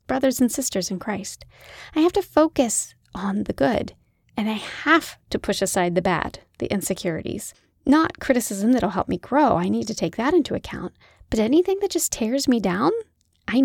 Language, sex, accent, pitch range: English, female, American, 195-280 Hz